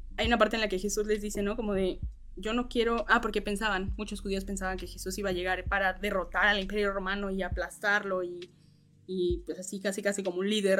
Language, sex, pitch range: Spanish, female, 190-245 Hz